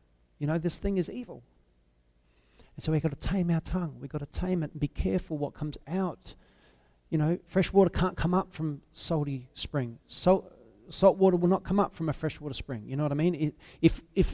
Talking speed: 225 wpm